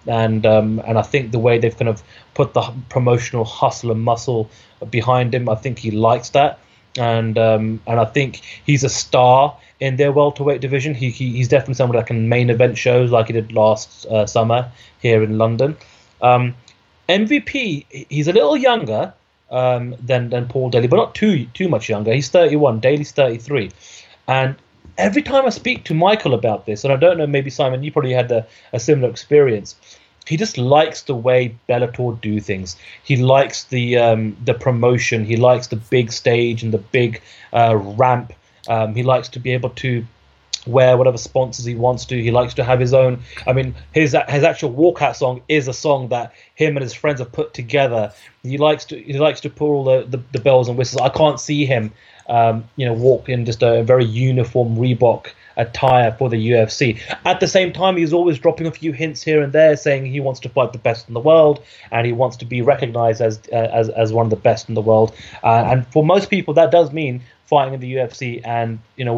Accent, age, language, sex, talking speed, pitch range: British, 30-49, English, male, 210 wpm, 115-140 Hz